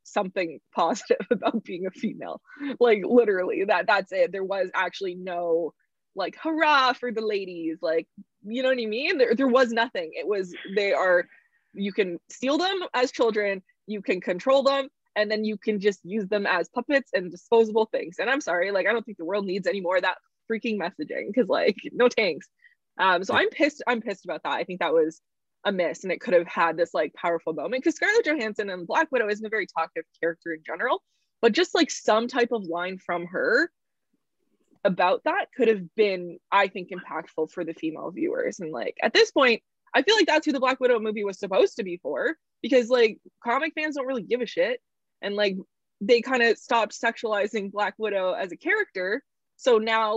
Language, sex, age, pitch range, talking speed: English, female, 20-39, 190-265 Hz, 205 wpm